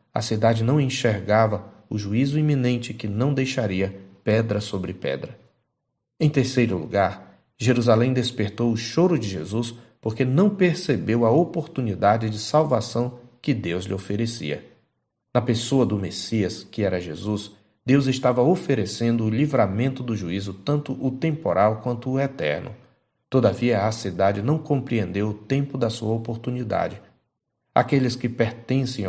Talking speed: 135 wpm